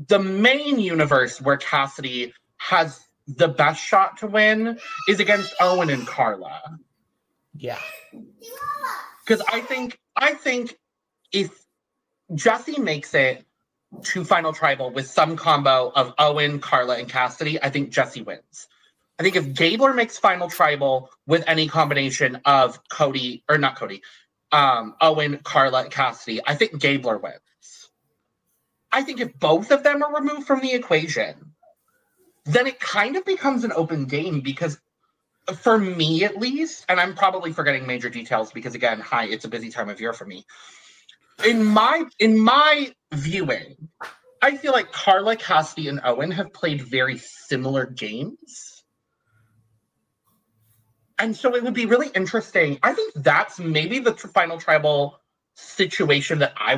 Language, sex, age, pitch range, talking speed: English, male, 30-49, 140-230 Hz, 145 wpm